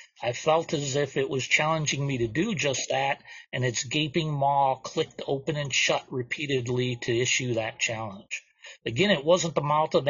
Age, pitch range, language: 40-59, 125-150 Hz, English